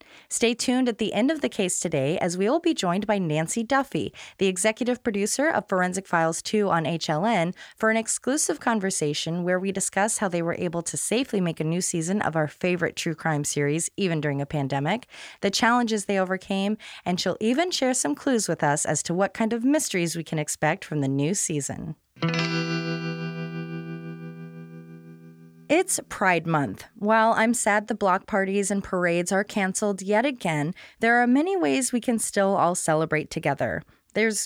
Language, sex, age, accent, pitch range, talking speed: English, female, 20-39, American, 160-220 Hz, 180 wpm